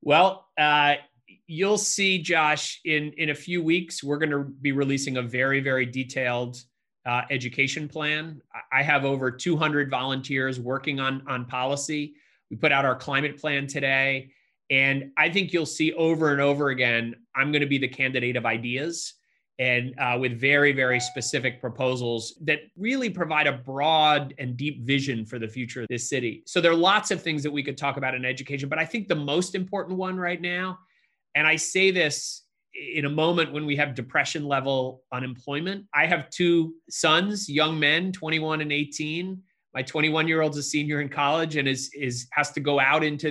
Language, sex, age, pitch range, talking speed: English, male, 30-49, 135-165 Hz, 185 wpm